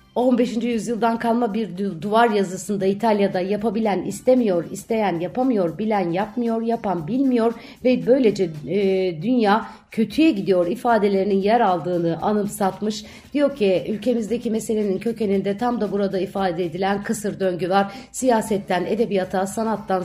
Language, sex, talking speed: Turkish, female, 125 wpm